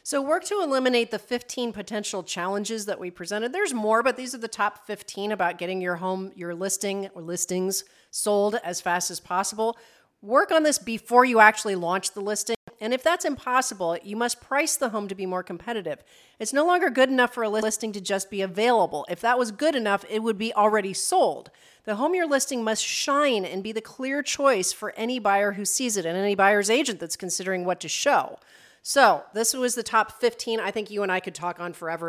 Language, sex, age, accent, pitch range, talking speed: English, female, 40-59, American, 185-245 Hz, 220 wpm